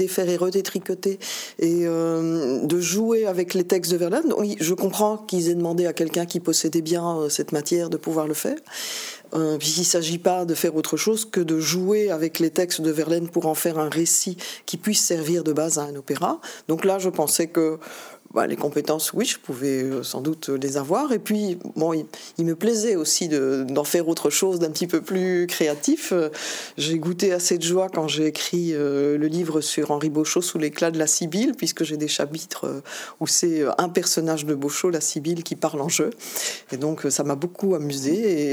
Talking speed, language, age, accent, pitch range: 205 wpm, French, 40-59, French, 155-195 Hz